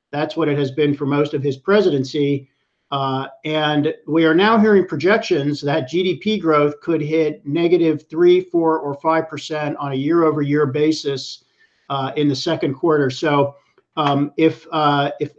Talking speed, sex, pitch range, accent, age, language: 170 wpm, male, 145-170 Hz, American, 50-69, English